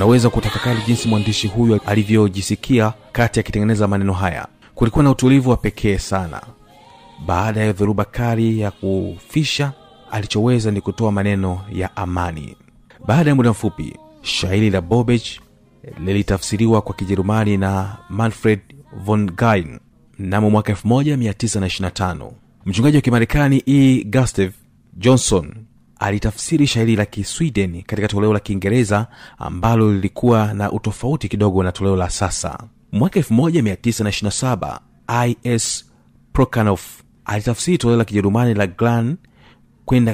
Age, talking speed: 30-49, 115 wpm